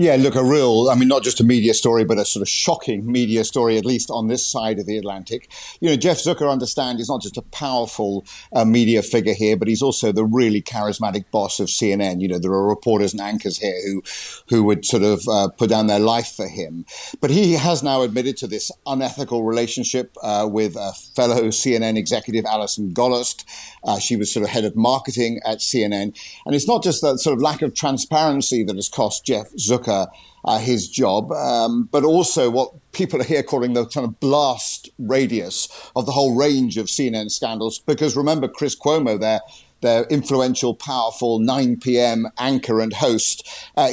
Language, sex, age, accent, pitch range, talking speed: English, male, 50-69, British, 110-130 Hz, 200 wpm